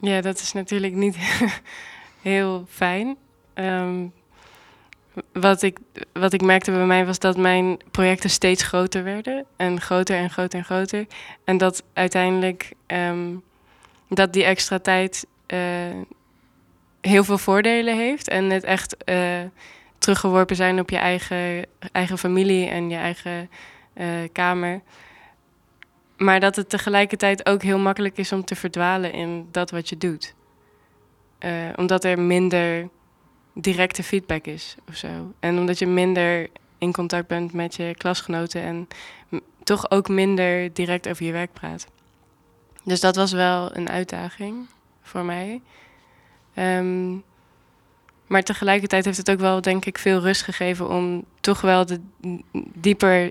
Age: 20-39